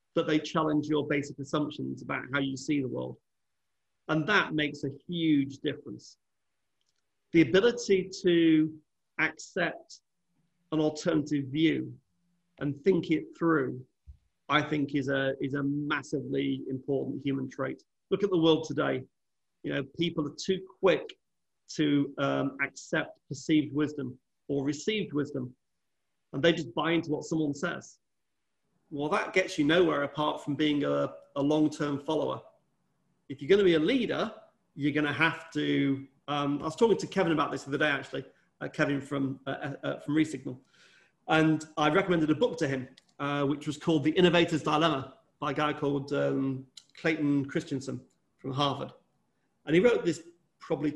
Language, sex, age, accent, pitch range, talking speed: English, male, 40-59, British, 140-165 Hz, 160 wpm